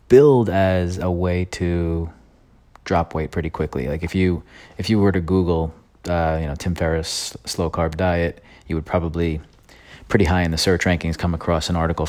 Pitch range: 80-90 Hz